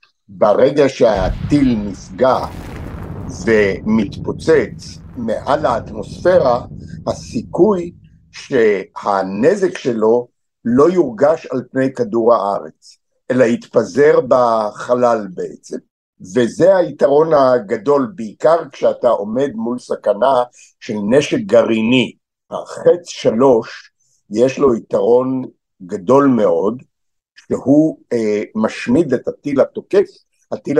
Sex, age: male, 60-79